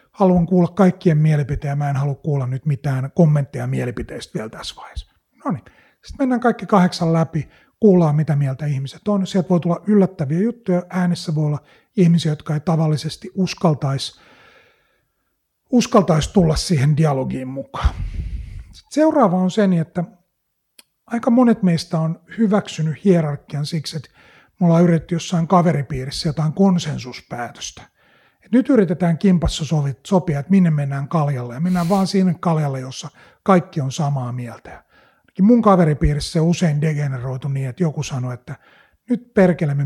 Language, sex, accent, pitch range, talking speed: Finnish, male, native, 145-185 Hz, 145 wpm